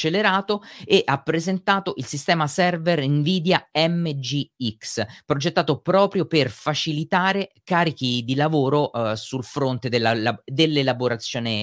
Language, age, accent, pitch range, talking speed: Italian, 30-49, native, 120-170 Hz, 110 wpm